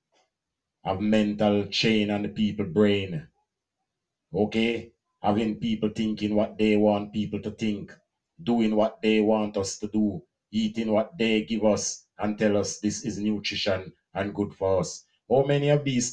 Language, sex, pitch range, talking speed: English, male, 100-115 Hz, 165 wpm